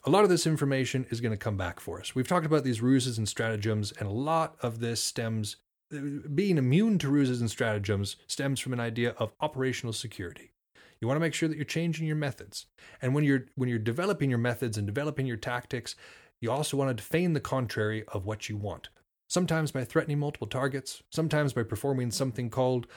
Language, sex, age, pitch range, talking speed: English, male, 30-49, 115-150 Hz, 210 wpm